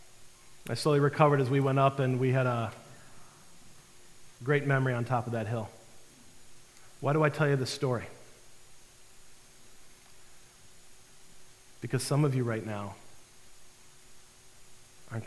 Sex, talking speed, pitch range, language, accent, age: male, 125 wpm, 115-130 Hz, English, American, 40-59